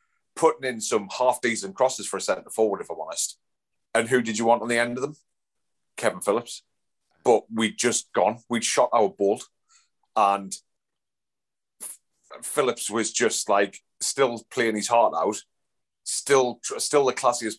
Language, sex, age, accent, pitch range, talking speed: English, male, 30-49, British, 105-130 Hz, 155 wpm